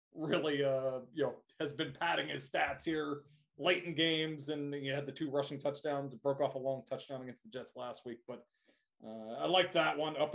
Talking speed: 215 wpm